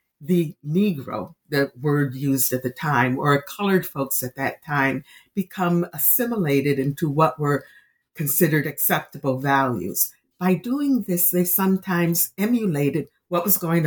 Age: 60-79